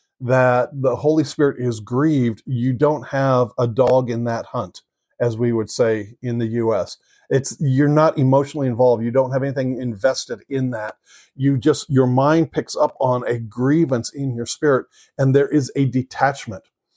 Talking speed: 175 wpm